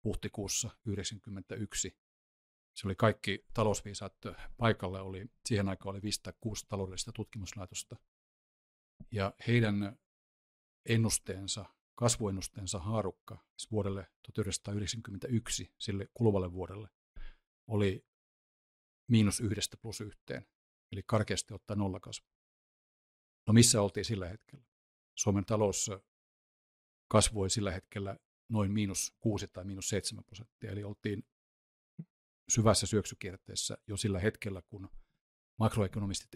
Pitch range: 95-110 Hz